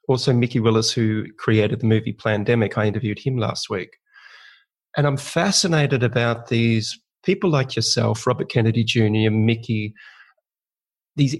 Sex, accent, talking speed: male, Australian, 135 wpm